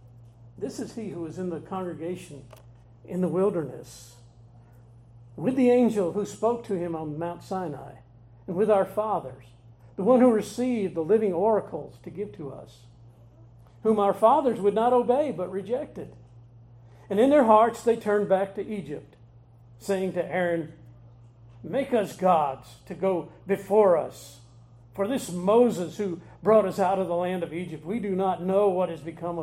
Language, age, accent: English, 50-69, American